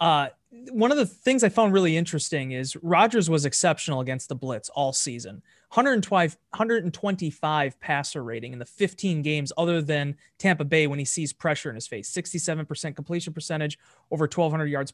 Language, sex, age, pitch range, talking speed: English, male, 30-49, 145-185 Hz, 170 wpm